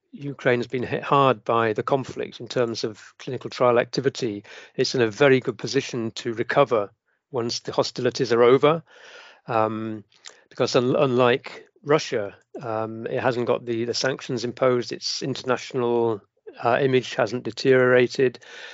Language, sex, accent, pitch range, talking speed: English, male, British, 115-135 Hz, 145 wpm